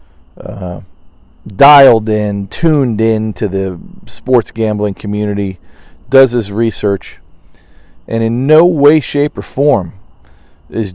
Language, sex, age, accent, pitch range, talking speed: English, male, 40-59, American, 90-115 Hz, 115 wpm